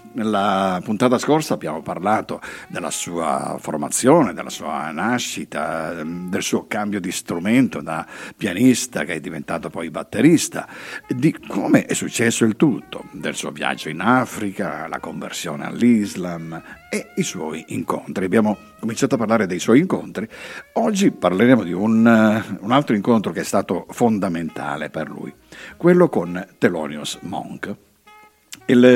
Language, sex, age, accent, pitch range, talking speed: Italian, male, 50-69, native, 95-150 Hz, 135 wpm